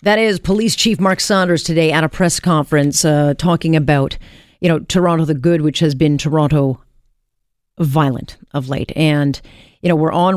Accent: American